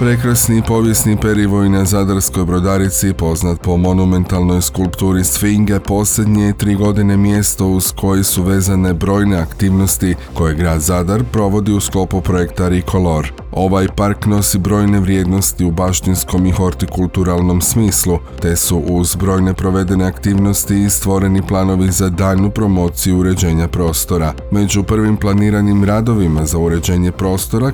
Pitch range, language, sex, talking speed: 90-100 Hz, Croatian, male, 130 wpm